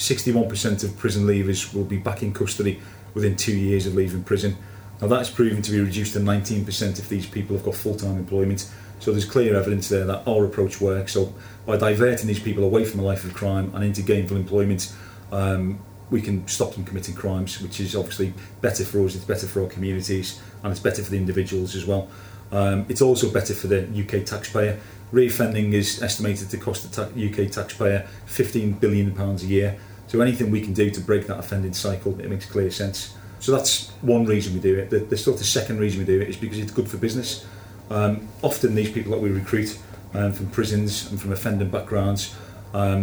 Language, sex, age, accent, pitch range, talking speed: English, male, 30-49, British, 100-105 Hz, 210 wpm